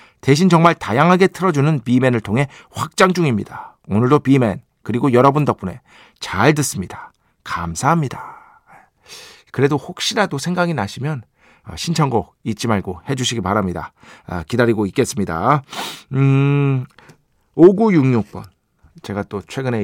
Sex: male